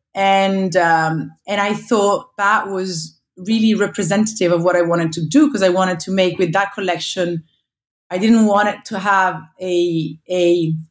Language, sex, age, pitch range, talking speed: English, female, 30-49, 160-195 Hz, 170 wpm